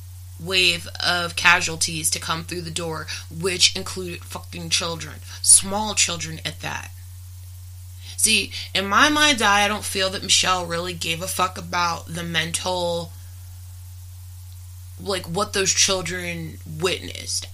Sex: female